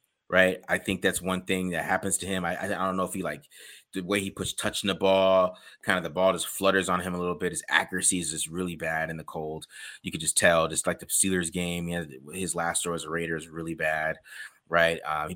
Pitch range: 85-100 Hz